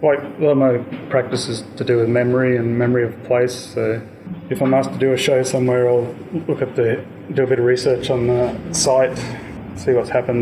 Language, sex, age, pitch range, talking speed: English, male, 20-39, 115-130 Hz, 225 wpm